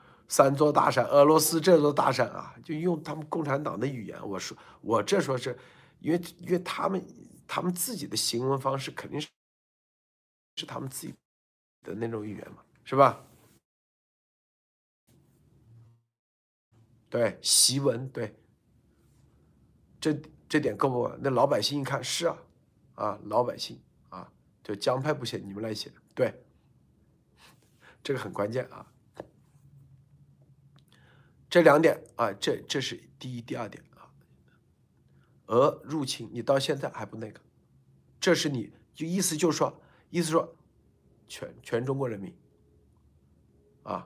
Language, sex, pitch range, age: Chinese, male, 120-170 Hz, 50-69